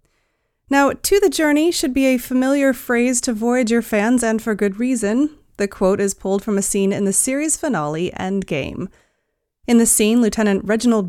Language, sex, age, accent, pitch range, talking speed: English, female, 30-49, American, 195-260 Hz, 180 wpm